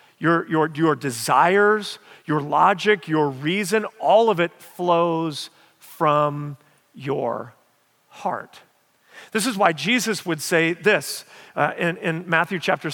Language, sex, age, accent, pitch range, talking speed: English, male, 40-59, American, 165-220 Hz, 125 wpm